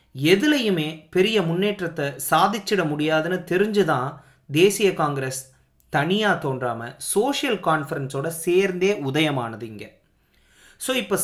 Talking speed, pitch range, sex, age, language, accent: 95 wpm, 135-195 Hz, male, 30-49, Tamil, native